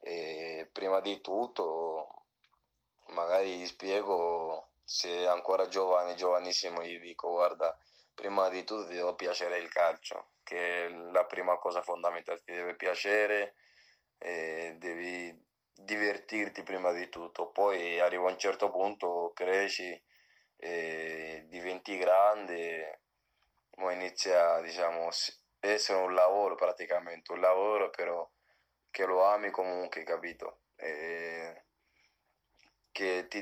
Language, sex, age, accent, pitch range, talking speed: Italian, male, 20-39, native, 85-95 Hz, 115 wpm